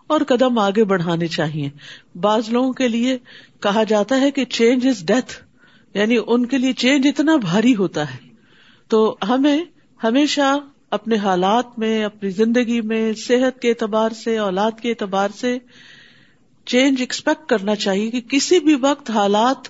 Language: Urdu